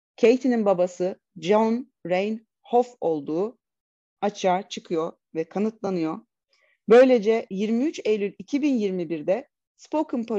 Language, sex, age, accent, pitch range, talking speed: Turkish, female, 30-49, native, 180-230 Hz, 80 wpm